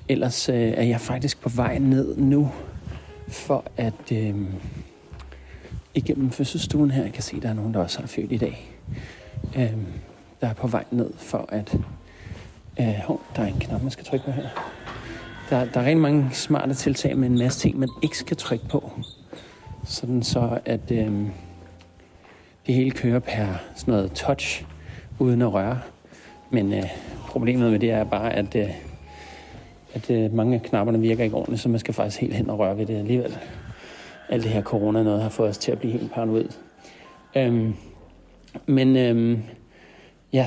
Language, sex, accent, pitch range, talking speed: Danish, male, native, 105-130 Hz, 180 wpm